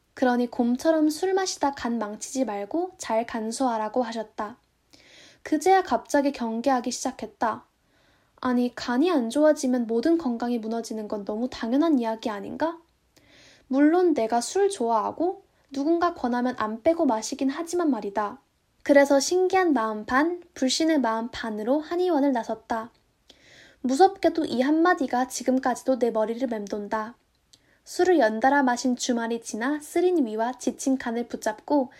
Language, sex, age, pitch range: Korean, female, 10-29, 230-310 Hz